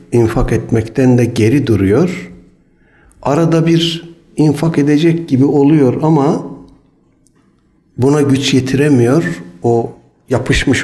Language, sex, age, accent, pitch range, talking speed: Turkish, male, 60-79, native, 100-140 Hz, 95 wpm